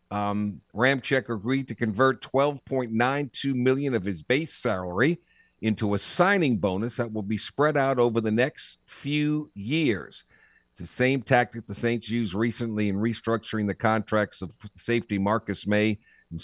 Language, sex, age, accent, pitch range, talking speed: English, male, 50-69, American, 100-130 Hz, 155 wpm